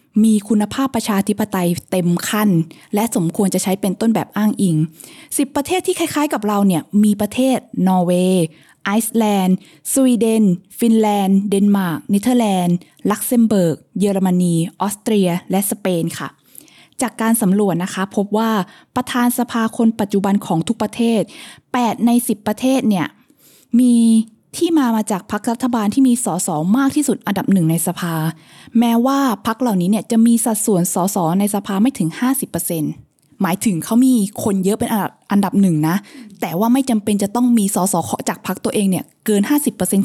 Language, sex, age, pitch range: Thai, female, 20-39, 190-245 Hz